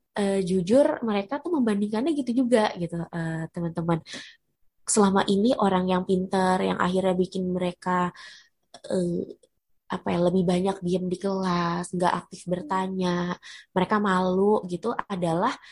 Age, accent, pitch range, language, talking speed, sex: 20-39, native, 180-230 Hz, Indonesian, 130 wpm, female